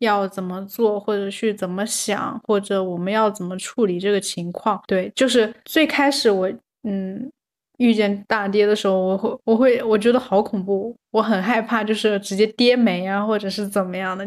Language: Chinese